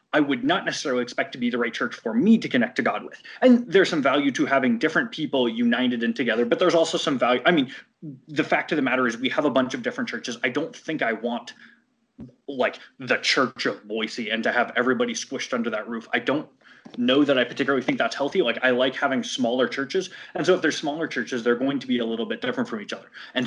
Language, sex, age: English, male, 20-39